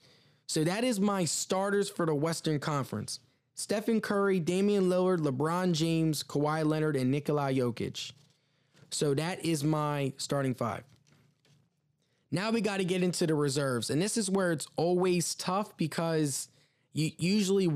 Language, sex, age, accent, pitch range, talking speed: English, male, 20-39, American, 135-170 Hz, 145 wpm